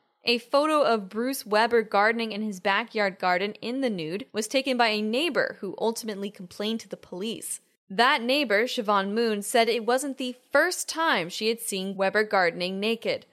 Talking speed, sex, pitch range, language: 180 wpm, female, 205-255 Hz, English